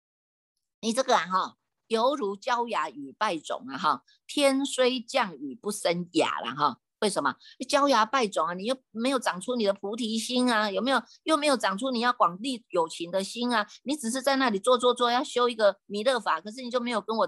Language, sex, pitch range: Chinese, female, 195-260 Hz